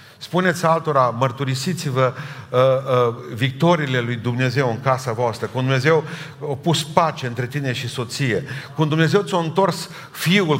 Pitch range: 125-160 Hz